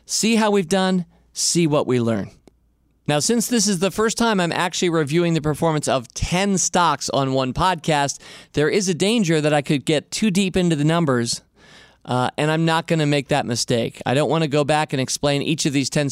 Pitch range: 130-180 Hz